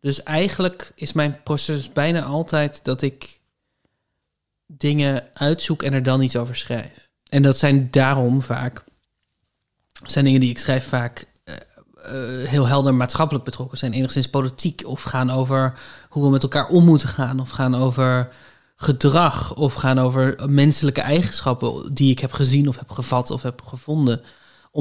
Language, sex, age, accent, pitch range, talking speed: Dutch, male, 20-39, Dutch, 130-145 Hz, 160 wpm